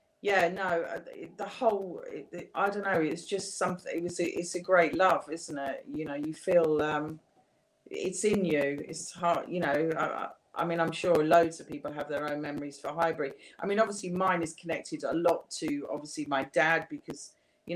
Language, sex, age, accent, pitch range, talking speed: English, female, 40-59, British, 150-175 Hz, 200 wpm